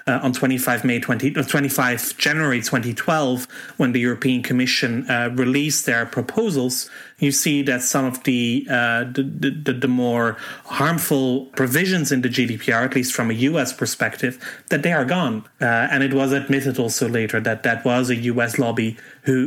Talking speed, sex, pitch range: 175 wpm, male, 120-140 Hz